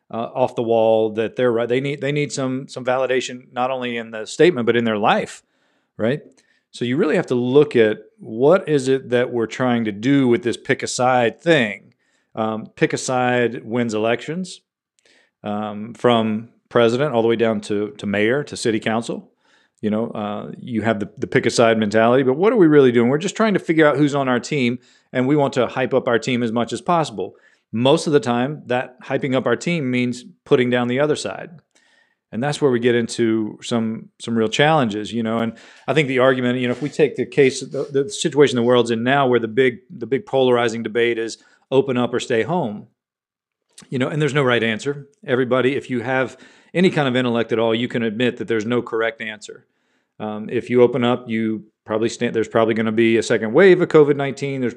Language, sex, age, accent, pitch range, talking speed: English, male, 40-59, American, 115-135 Hz, 225 wpm